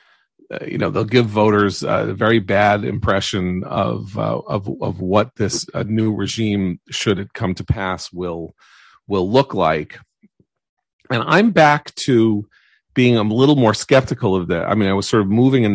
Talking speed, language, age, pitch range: 175 wpm, English, 40-59, 100-125 Hz